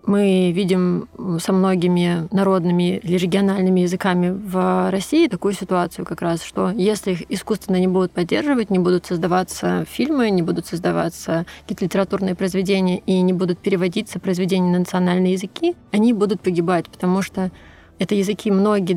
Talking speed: 150 wpm